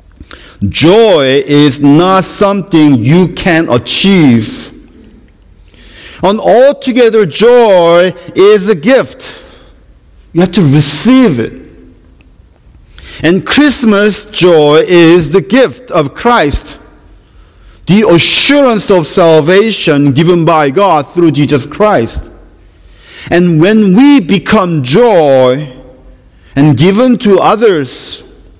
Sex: male